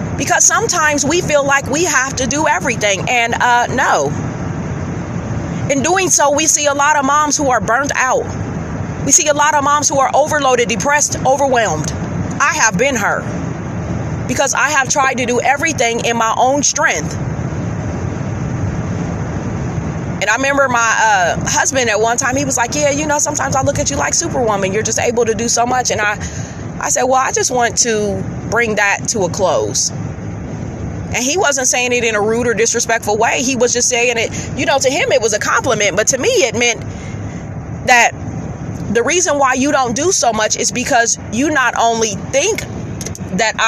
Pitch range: 230-290 Hz